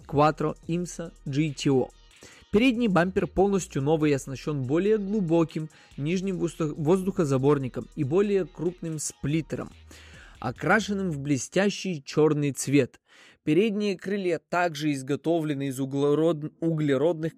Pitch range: 140-175 Hz